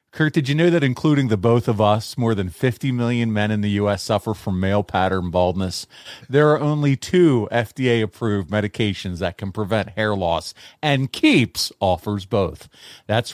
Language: English